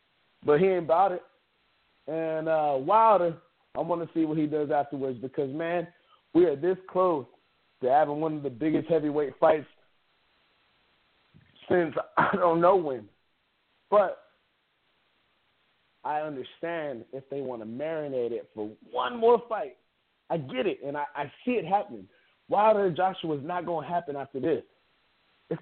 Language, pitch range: English, 150-185 Hz